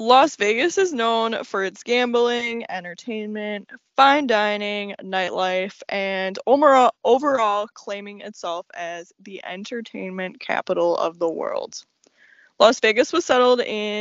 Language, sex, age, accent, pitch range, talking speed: English, female, 10-29, American, 195-250 Hz, 115 wpm